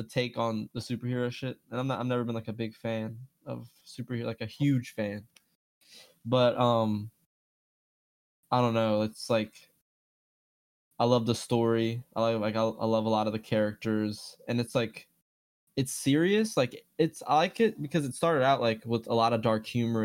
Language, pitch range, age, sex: English, 110-125 Hz, 10-29, male